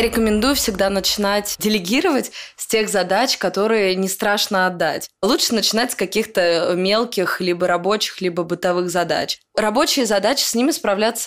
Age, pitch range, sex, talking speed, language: 20-39, 180-215 Hz, female, 140 wpm, Russian